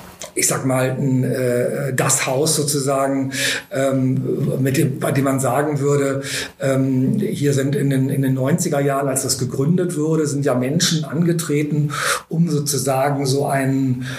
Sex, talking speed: male, 155 wpm